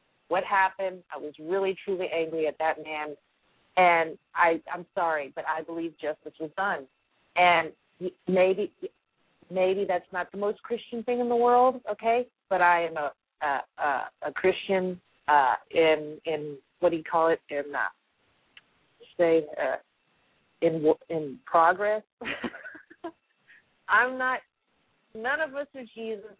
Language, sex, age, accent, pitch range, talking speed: English, female, 40-59, American, 160-200 Hz, 145 wpm